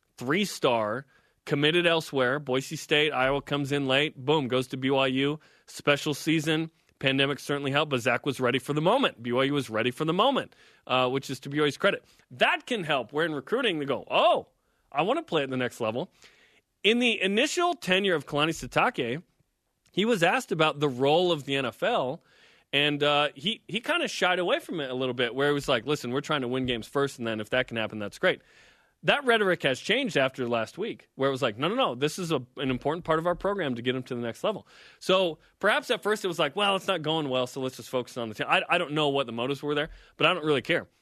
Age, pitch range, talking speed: 30-49, 130-170 Hz, 240 wpm